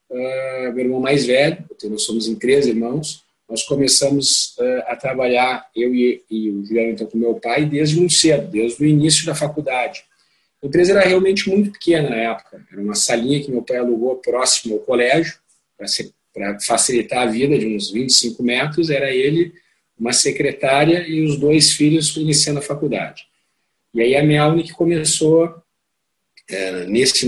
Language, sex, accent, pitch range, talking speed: Portuguese, male, Brazilian, 115-150 Hz, 170 wpm